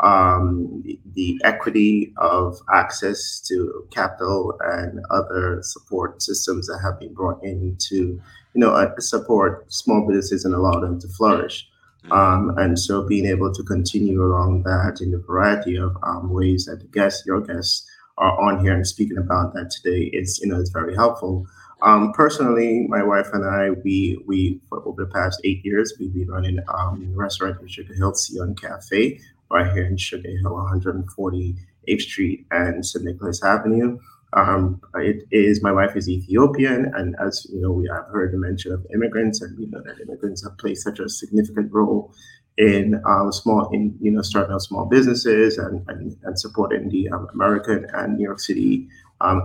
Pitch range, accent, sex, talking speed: 90-105 Hz, American, male, 180 wpm